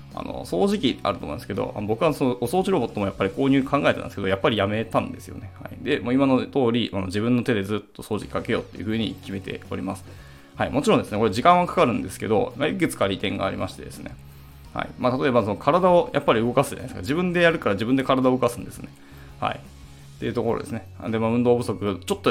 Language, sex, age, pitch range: Japanese, male, 20-39, 95-130 Hz